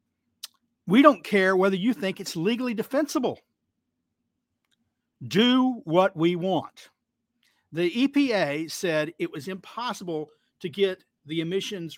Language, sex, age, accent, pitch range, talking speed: English, male, 50-69, American, 155-210 Hz, 115 wpm